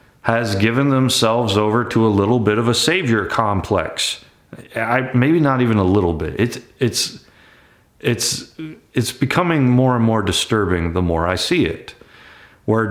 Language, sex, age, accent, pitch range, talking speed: English, male, 30-49, American, 95-125 Hz, 155 wpm